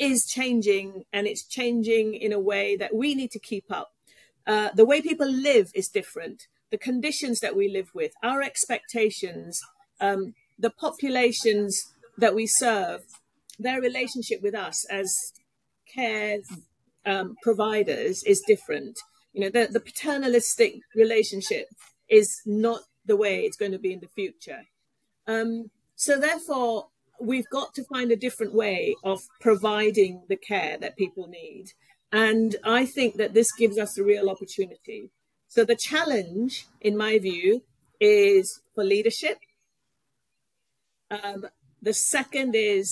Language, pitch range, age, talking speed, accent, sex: English, 205-265 Hz, 40-59, 145 wpm, British, female